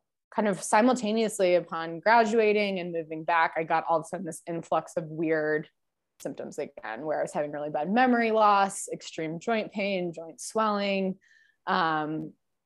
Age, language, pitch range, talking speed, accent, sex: 20-39, English, 165-205 Hz, 160 wpm, American, female